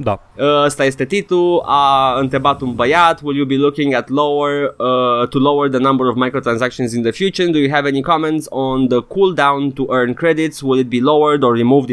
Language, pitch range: Romanian, 125-170 Hz